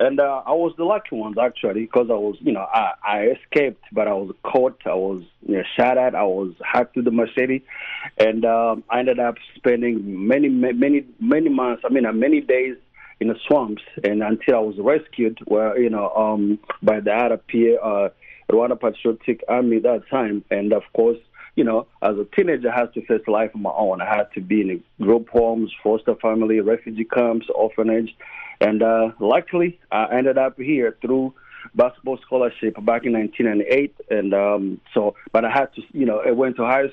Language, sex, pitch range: English, male, 110-130 Hz